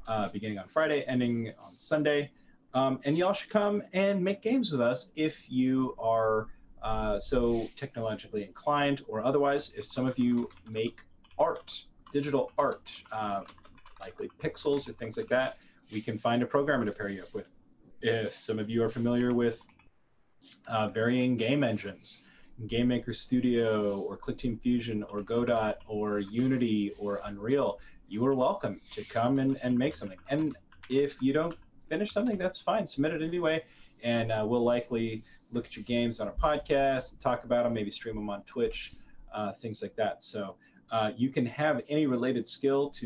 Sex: male